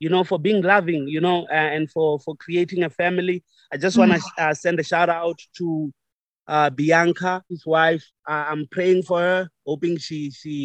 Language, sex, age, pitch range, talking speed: English, male, 30-49, 140-170 Hz, 190 wpm